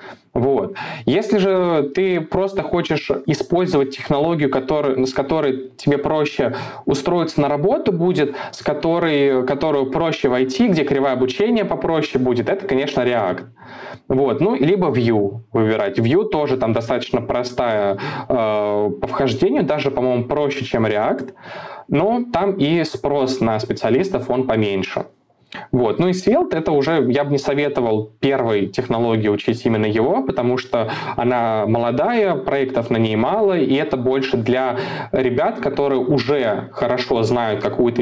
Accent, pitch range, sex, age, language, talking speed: native, 125-165 Hz, male, 20-39, Russian, 140 wpm